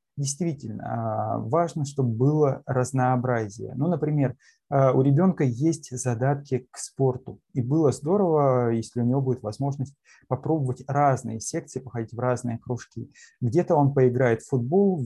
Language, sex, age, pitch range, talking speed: Russian, male, 20-39, 120-140 Hz, 135 wpm